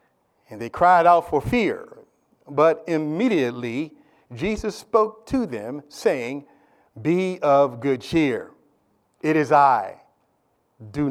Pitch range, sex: 140-225 Hz, male